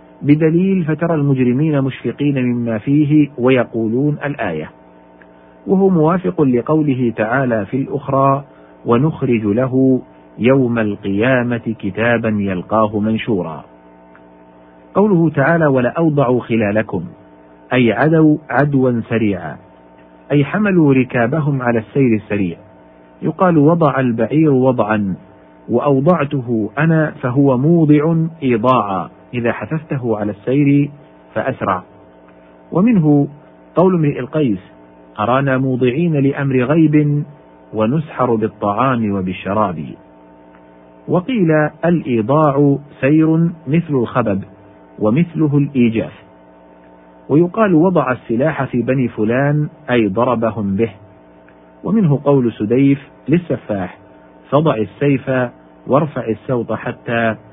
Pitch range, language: 100-145 Hz, Arabic